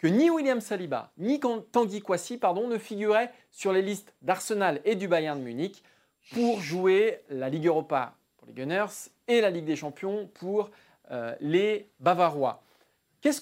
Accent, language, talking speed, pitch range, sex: French, French, 160 wpm, 145-210 Hz, male